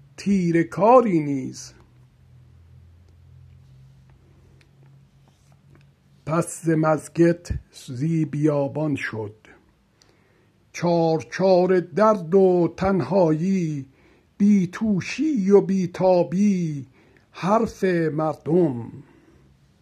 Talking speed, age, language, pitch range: 60 wpm, 60-79, Persian, 150-215 Hz